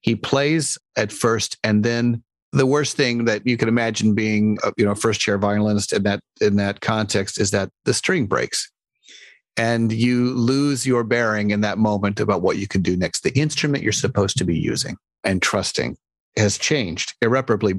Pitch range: 105-135 Hz